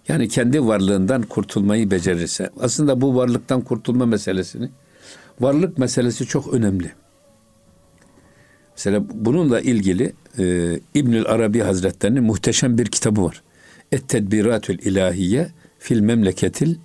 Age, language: 60-79, Turkish